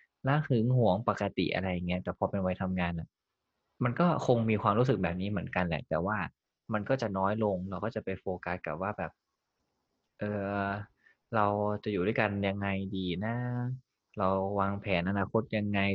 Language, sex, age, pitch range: Thai, male, 20-39, 95-115 Hz